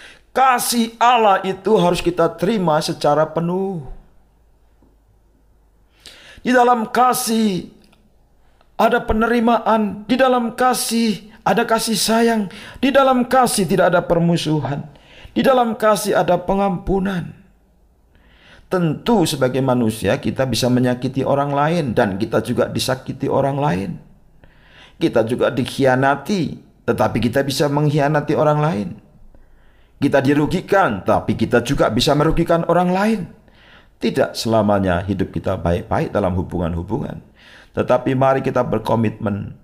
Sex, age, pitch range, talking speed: male, 50-69, 130-205 Hz, 110 wpm